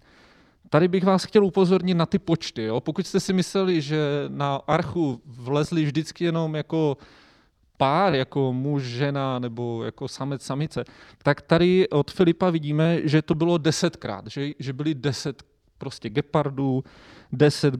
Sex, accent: male, native